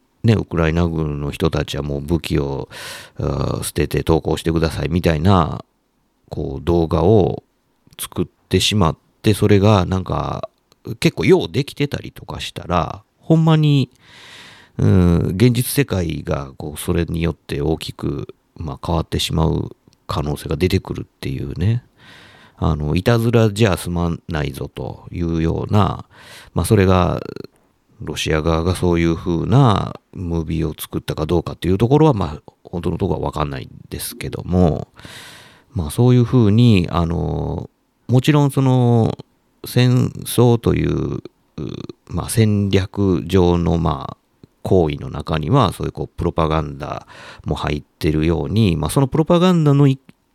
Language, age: Japanese, 50-69